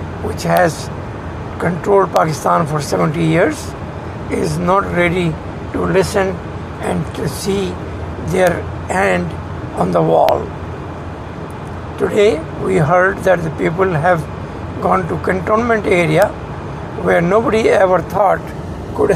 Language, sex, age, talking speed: English, male, 60-79, 115 wpm